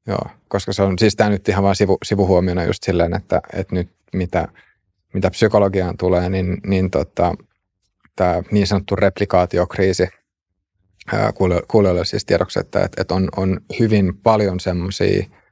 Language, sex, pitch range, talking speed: Finnish, male, 90-100 Hz, 145 wpm